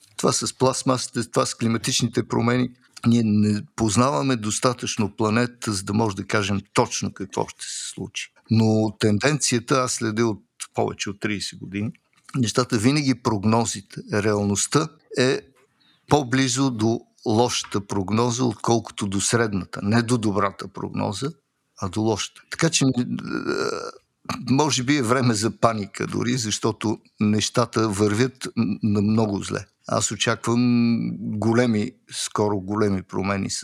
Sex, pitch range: male, 105-125 Hz